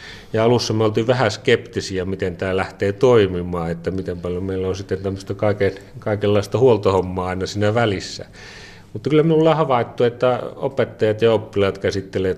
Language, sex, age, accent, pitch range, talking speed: Finnish, male, 30-49, native, 90-105 Hz, 155 wpm